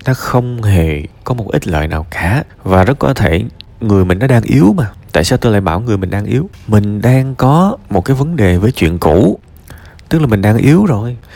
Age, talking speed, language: 20-39, 230 wpm, Vietnamese